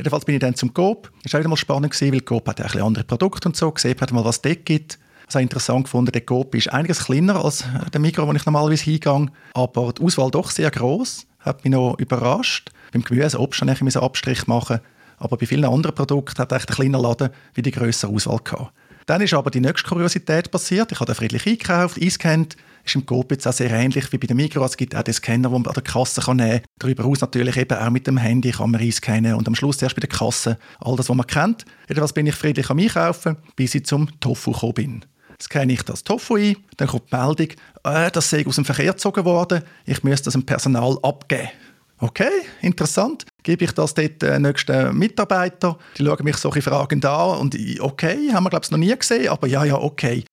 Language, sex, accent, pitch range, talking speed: German, male, Austrian, 125-160 Hz, 230 wpm